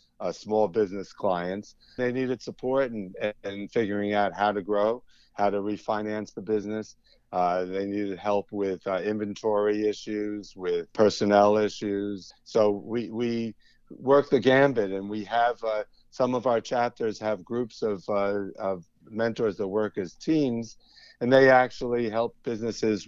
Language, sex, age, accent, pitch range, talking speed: English, male, 50-69, American, 100-115 Hz, 155 wpm